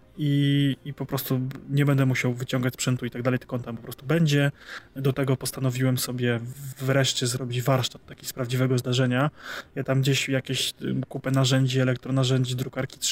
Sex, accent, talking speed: male, native, 165 wpm